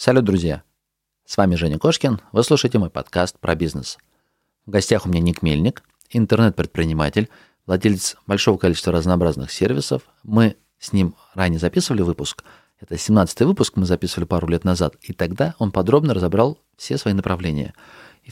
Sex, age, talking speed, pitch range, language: male, 30-49, 155 wpm, 90-120 Hz, Russian